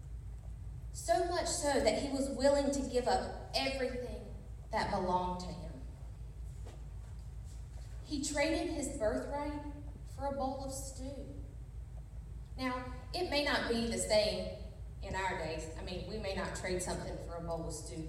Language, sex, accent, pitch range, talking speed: English, female, American, 245-295 Hz, 155 wpm